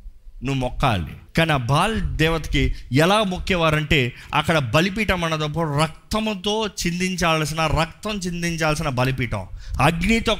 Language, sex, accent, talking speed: Telugu, male, native, 100 wpm